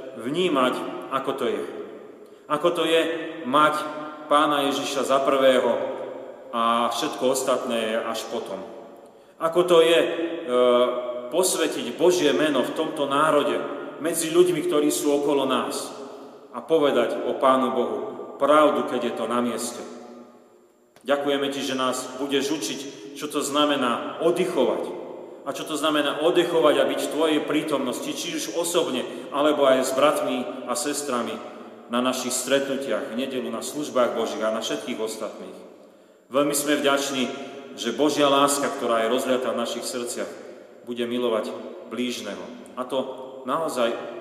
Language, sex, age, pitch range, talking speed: Slovak, male, 40-59, 125-150 Hz, 140 wpm